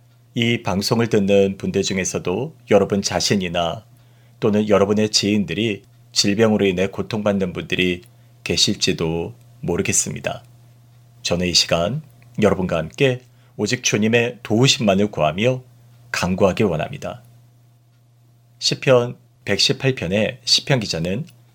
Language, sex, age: Korean, male, 40-59